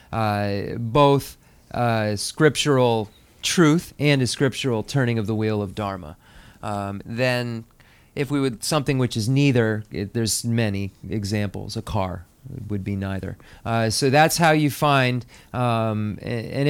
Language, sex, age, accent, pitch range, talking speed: English, male, 40-59, American, 110-145 Hz, 145 wpm